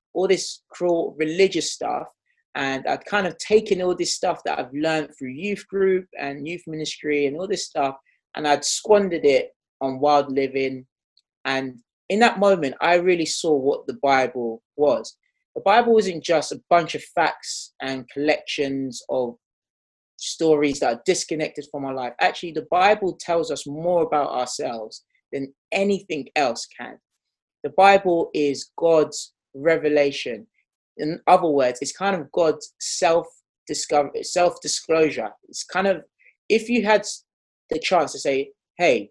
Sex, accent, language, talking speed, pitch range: male, British, English, 150 wpm, 140-190 Hz